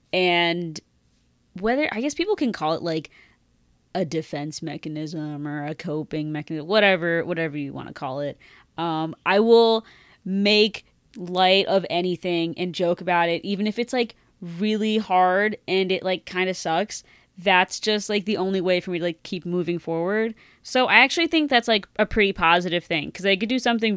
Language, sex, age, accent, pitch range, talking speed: English, female, 20-39, American, 160-200 Hz, 185 wpm